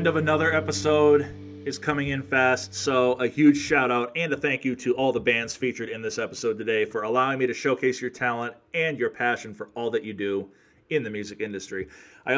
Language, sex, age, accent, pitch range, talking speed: English, male, 30-49, American, 110-140 Hz, 220 wpm